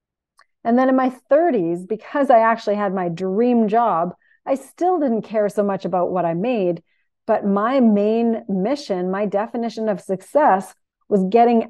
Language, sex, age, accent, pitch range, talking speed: English, female, 40-59, American, 185-230 Hz, 165 wpm